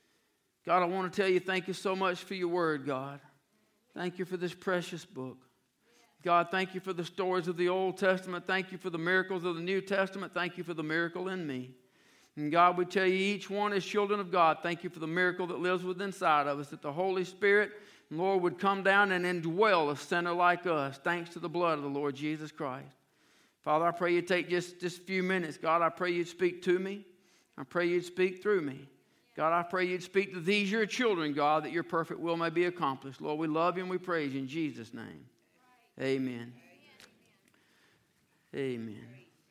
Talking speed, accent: 220 wpm, American